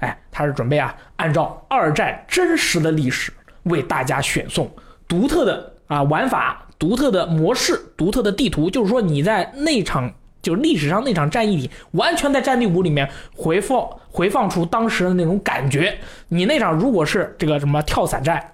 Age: 20-39